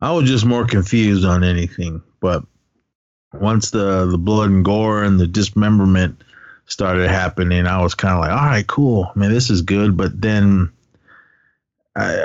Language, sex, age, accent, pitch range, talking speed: English, male, 30-49, American, 90-115 Hz, 170 wpm